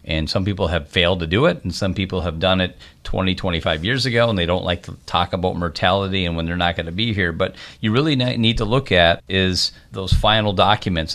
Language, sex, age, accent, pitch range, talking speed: English, male, 40-59, American, 85-105 Hz, 240 wpm